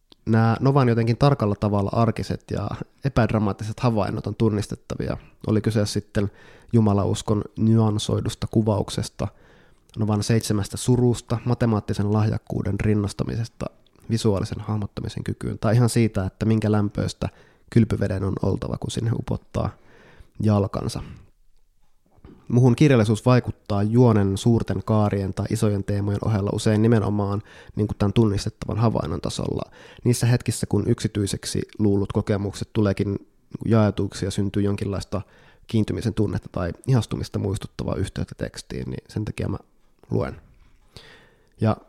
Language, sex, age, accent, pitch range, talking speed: Finnish, male, 20-39, native, 100-115 Hz, 115 wpm